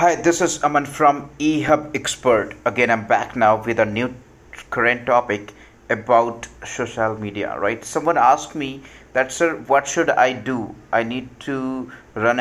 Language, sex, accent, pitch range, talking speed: English, male, Indian, 110-140 Hz, 160 wpm